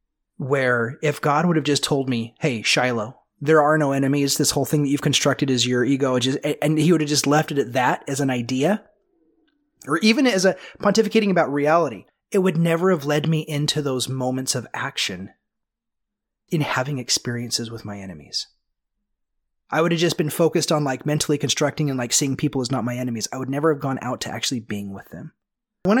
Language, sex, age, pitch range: English, male, 30-49, 130-175 Hz